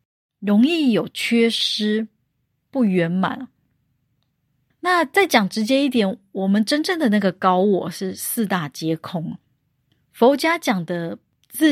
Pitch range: 175-240 Hz